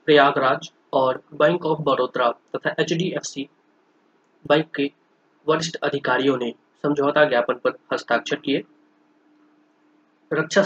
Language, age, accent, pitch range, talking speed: Hindi, 20-39, native, 140-205 Hz, 100 wpm